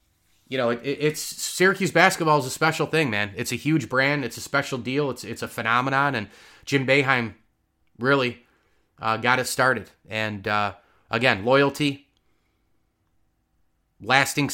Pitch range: 115-150 Hz